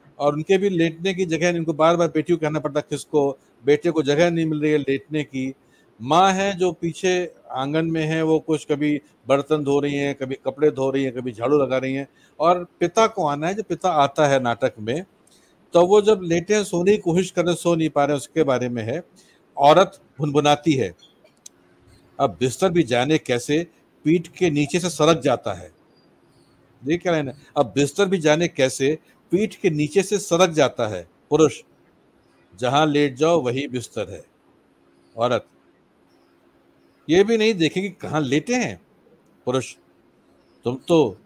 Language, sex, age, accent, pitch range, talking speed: Hindi, male, 60-79, native, 130-175 Hz, 175 wpm